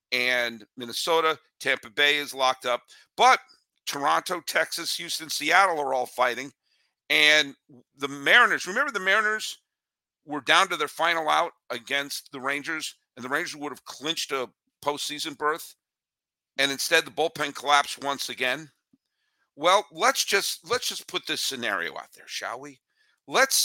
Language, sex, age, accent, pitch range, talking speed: English, male, 50-69, American, 130-170 Hz, 150 wpm